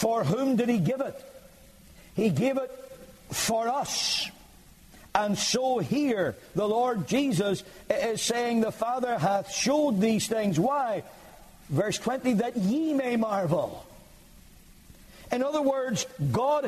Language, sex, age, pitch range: English, male, 60-79, 160-220 Hz